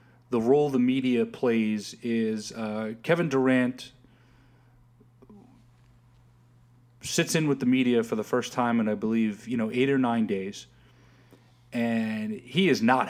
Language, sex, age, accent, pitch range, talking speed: English, male, 30-49, American, 120-165 Hz, 140 wpm